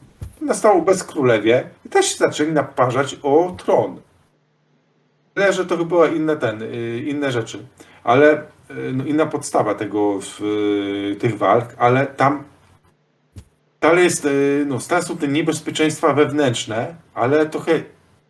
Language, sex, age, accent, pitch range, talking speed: Polish, male, 40-59, native, 120-150 Hz, 120 wpm